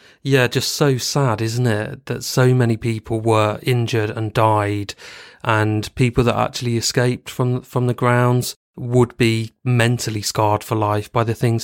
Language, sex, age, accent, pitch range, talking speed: English, male, 30-49, British, 110-125 Hz, 165 wpm